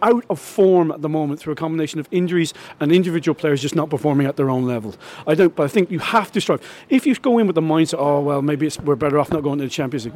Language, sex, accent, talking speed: English, male, British, 295 wpm